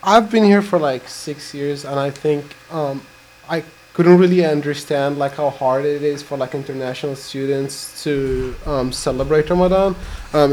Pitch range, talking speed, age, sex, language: 135-150 Hz, 165 wpm, 20-39, male, English